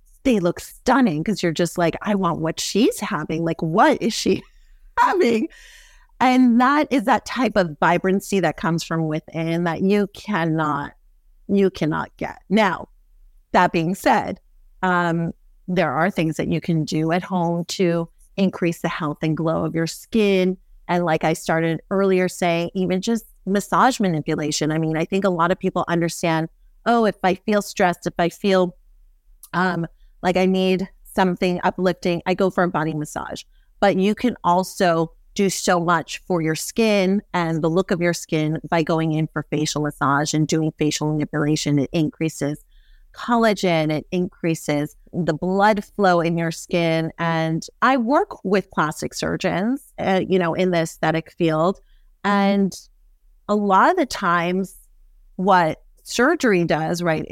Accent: American